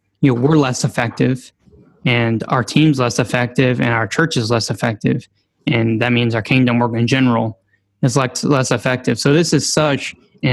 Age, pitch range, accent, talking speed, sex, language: 10-29, 120-140 Hz, American, 190 wpm, male, English